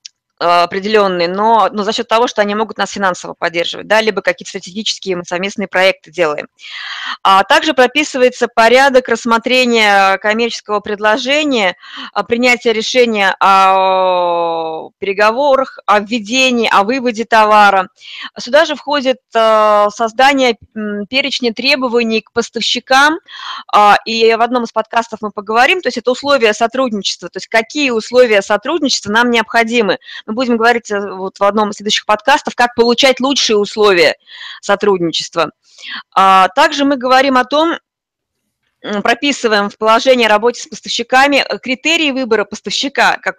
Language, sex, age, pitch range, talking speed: Russian, female, 20-39, 200-250 Hz, 125 wpm